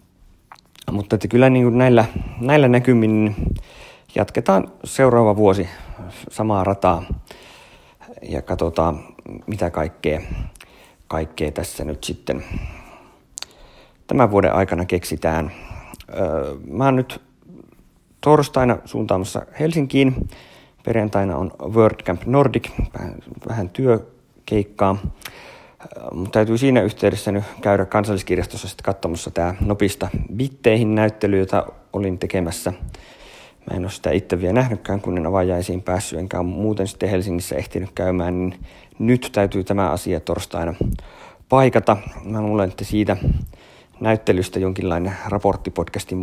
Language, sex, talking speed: Finnish, male, 105 wpm